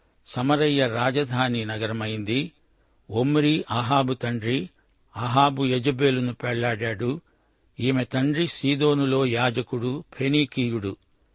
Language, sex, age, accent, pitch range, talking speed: Telugu, male, 60-79, native, 120-140 Hz, 75 wpm